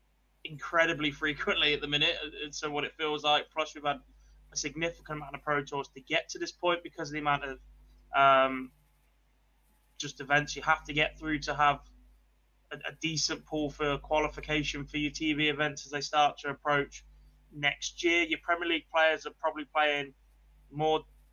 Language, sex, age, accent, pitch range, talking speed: English, male, 20-39, British, 140-165 Hz, 185 wpm